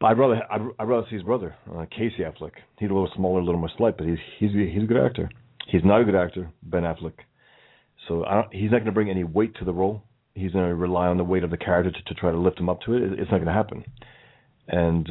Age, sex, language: 40-59, male, English